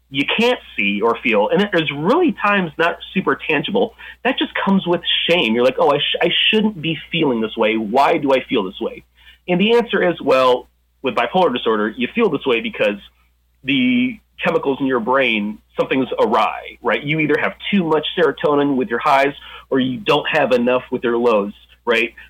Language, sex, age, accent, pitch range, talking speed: English, male, 30-49, American, 105-165 Hz, 195 wpm